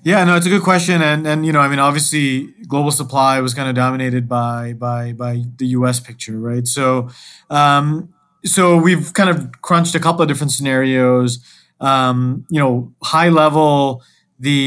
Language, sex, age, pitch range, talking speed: English, male, 30-49, 130-155 Hz, 180 wpm